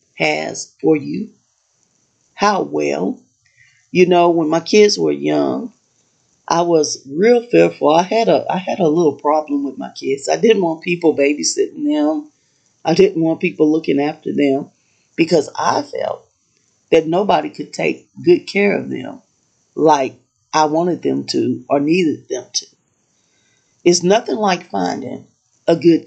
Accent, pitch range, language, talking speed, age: American, 150-220 Hz, English, 145 wpm, 40-59